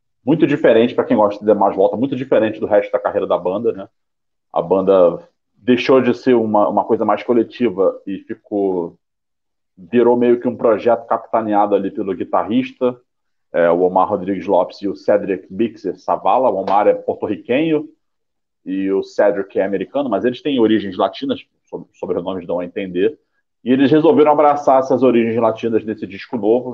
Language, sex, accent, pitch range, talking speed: Portuguese, male, Brazilian, 100-150 Hz, 175 wpm